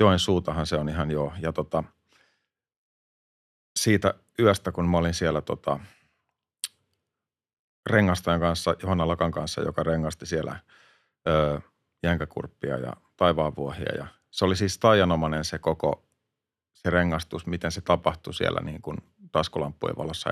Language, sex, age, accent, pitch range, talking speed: Finnish, male, 40-59, native, 80-105 Hz, 125 wpm